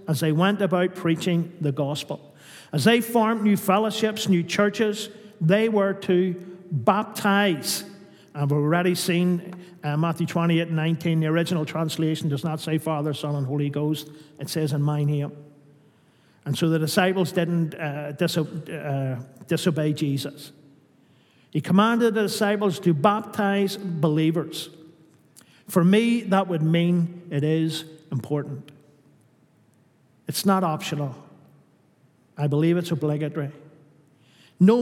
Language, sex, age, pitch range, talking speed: English, male, 50-69, 155-195 Hz, 130 wpm